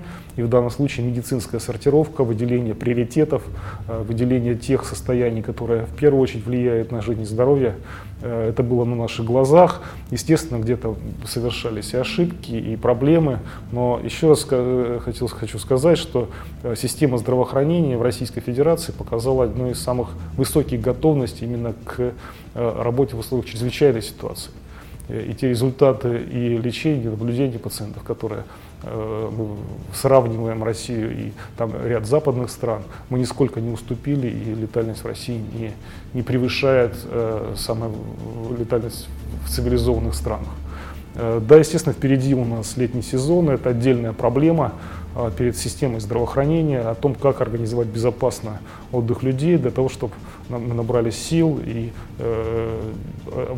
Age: 20-39